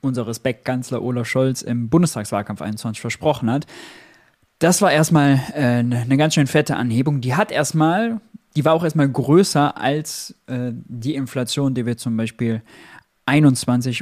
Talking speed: 150 wpm